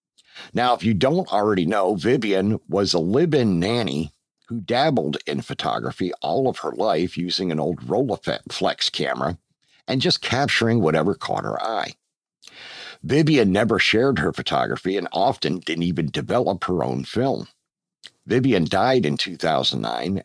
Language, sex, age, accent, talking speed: English, male, 50-69, American, 140 wpm